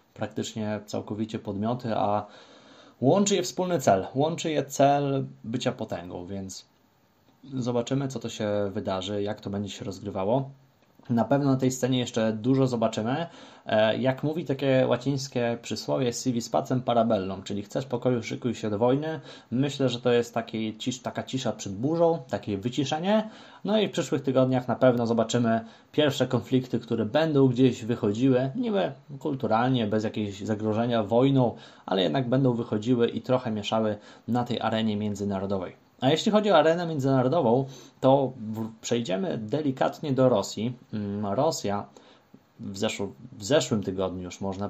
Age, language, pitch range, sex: 20-39, Polish, 110-135 Hz, male